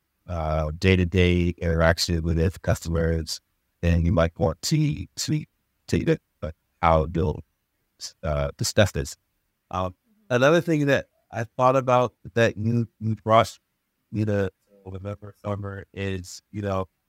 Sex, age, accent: male, 50-69, American